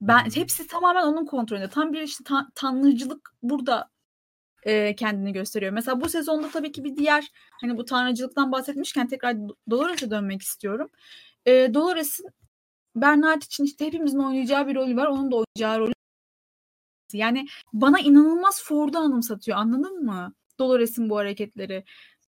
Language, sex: Turkish, female